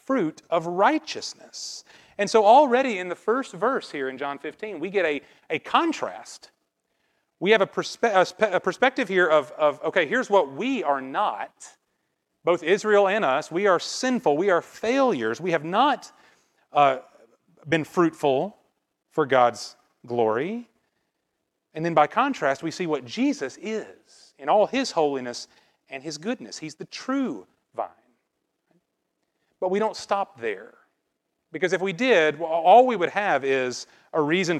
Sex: male